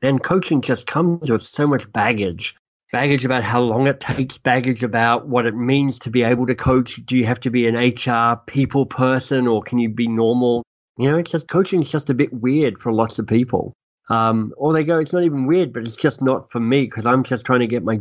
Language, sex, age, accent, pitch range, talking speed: English, male, 40-59, Australian, 110-130 Hz, 245 wpm